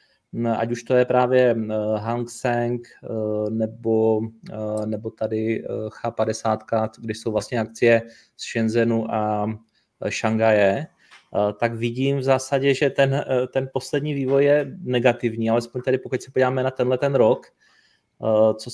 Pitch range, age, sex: 115-135 Hz, 20-39, male